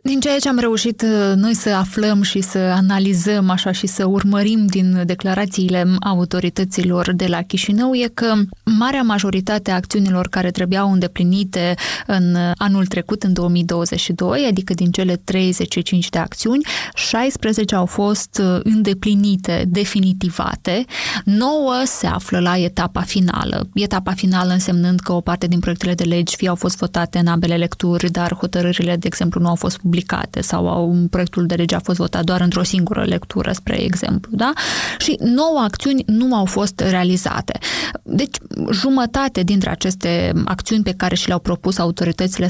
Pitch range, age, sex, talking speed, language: 180-205 Hz, 20-39, female, 155 wpm, Romanian